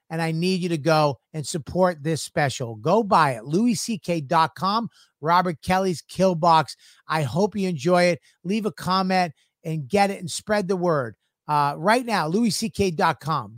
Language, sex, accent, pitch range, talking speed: English, male, American, 135-180 Hz, 165 wpm